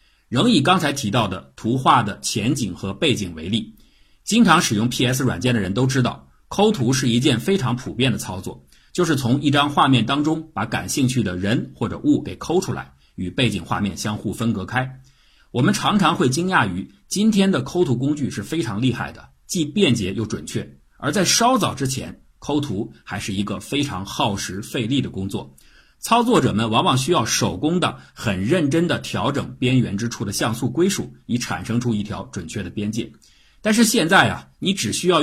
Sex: male